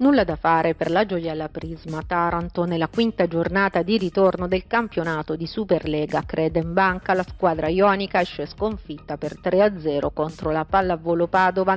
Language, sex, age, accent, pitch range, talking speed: Italian, female, 40-59, native, 165-200 Hz, 165 wpm